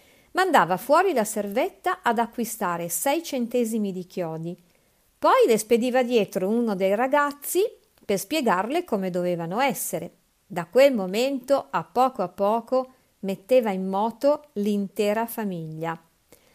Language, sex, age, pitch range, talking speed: Italian, female, 50-69, 210-315 Hz, 125 wpm